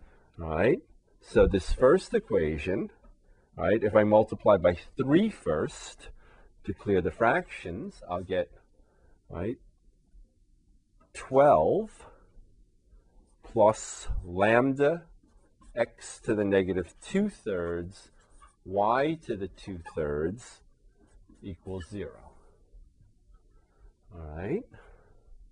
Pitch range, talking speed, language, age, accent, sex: 90-105 Hz, 85 wpm, English, 40-59, American, male